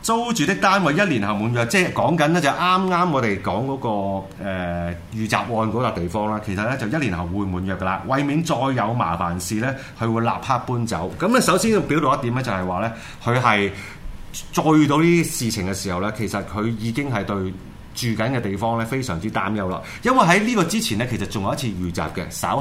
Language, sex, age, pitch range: Chinese, male, 30-49, 100-155 Hz